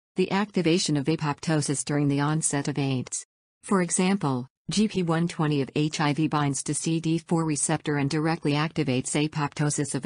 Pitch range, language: 140-165 Hz, English